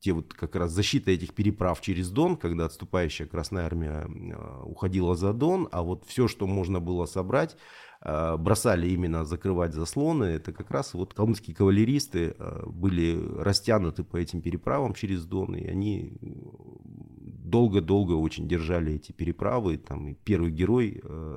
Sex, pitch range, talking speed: male, 80-105 Hz, 140 wpm